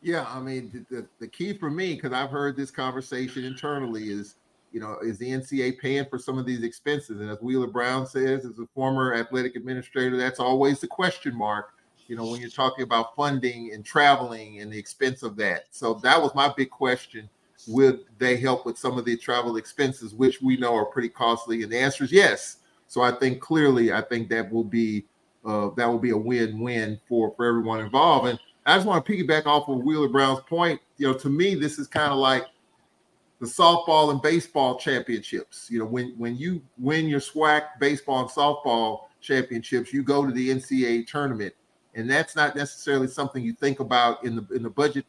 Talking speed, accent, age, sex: 210 wpm, American, 30-49, male